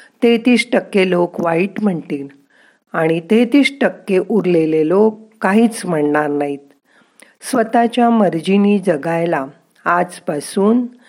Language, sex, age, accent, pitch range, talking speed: Marathi, female, 50-69, native, 165-235 Hz, 90 wpm